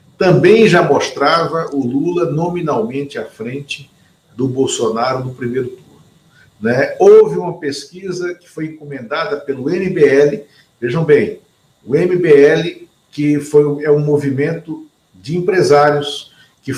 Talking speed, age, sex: 125 wpm, 50-69, male